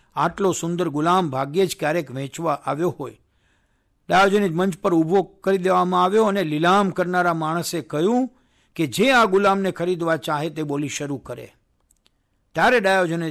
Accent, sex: native, male